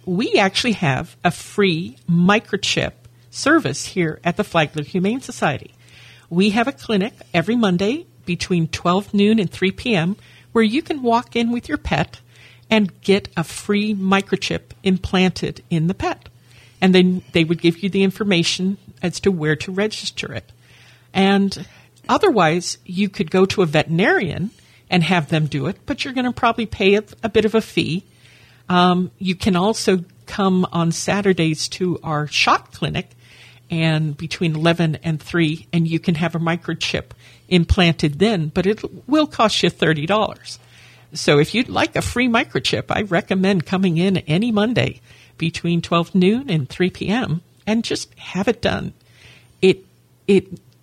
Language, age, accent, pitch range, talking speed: English, 50-69, American, 160-205 Hz, 160 wpm